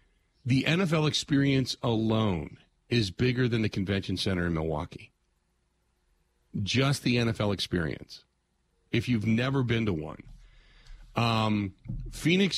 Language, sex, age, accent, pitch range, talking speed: English, male, 40-59, American, 100-125 Hz, 115 wpm